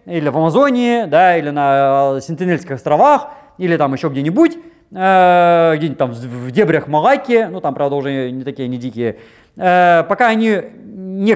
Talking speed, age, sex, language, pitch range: 155 wpm, 30-49, male, Russian, 165-250 Hz